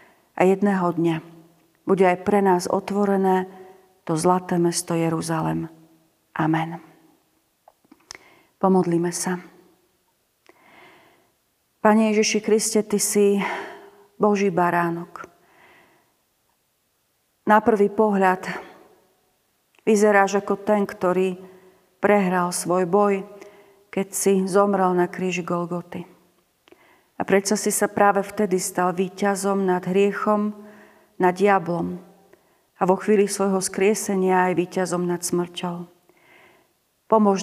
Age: 40-59